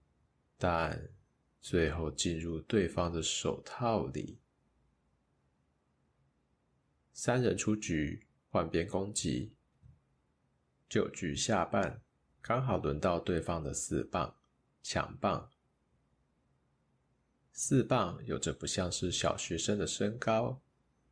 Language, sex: Chinese, male